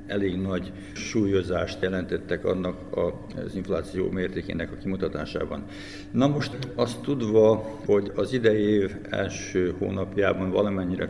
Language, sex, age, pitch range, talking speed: Hungarian, male, 60-79, 95-105 Hz, 115 wpm